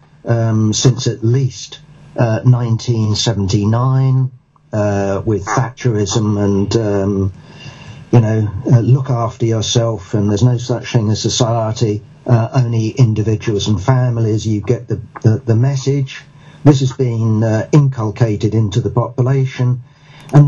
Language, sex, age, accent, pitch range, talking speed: English, male, 50-69, British, 115-135 Hz, 130 wpm